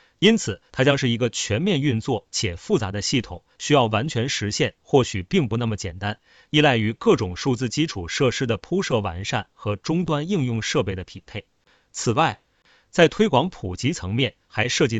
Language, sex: Chinese, male